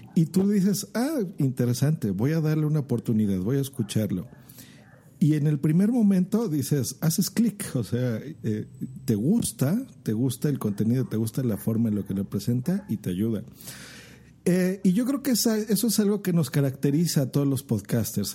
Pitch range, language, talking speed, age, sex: 115-160 Hz, Spanish, 185 wpm, 50-69, male